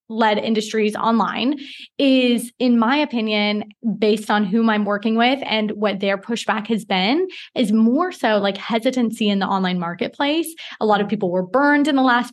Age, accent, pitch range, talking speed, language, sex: 20-39, American, 205-255 Hz, 180 wpm, English, female